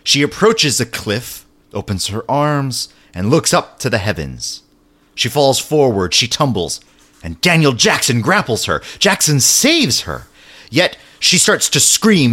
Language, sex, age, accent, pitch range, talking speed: English, male, 30-49, American, 95-155 Hz, 150 wpm